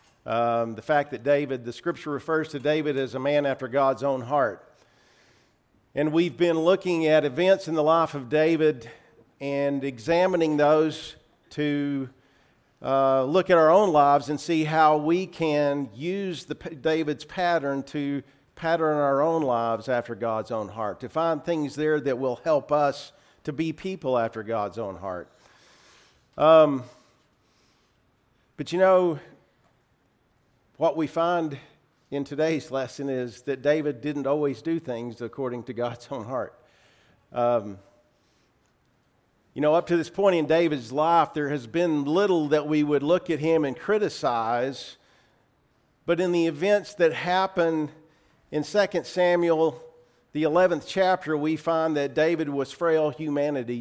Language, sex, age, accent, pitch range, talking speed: English, male, 50-69, American, 130-160 Hz, 150 wpm